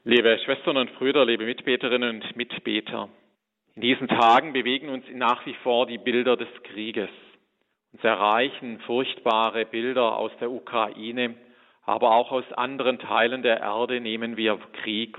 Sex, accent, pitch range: male, German, 115-130 Hz